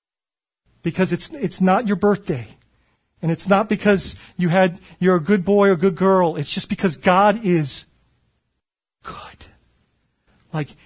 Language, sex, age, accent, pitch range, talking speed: English, male, 40-59, American, 175-215 Hz, 150 wpm